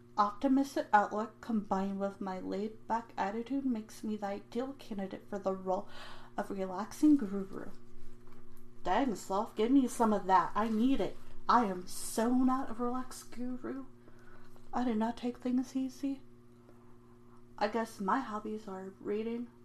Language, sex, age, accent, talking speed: English, female, 30-49, American, 145 wpm